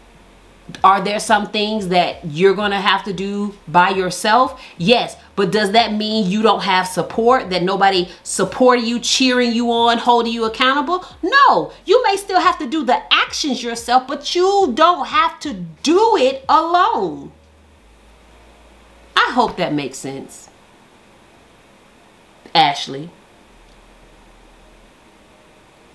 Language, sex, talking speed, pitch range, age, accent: English, female, 130 wpm, 185-260 Hz, 40-59, American